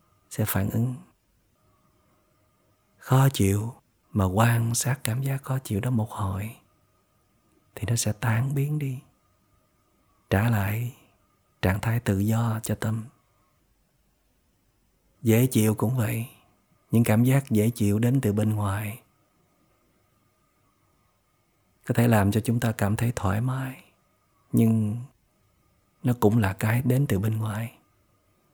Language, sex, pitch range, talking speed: Vietnamese, male, 100-120 Hz, 130 wpm